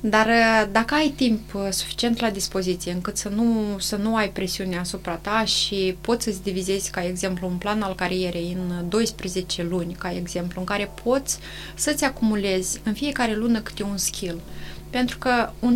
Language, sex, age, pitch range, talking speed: Romanian, female, 20-39, 190-240 Hz, 170 wpm